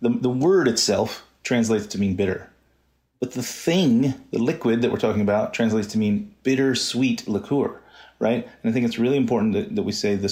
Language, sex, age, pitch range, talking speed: English, male, 30-49, 100-120 Hz, 205 wpm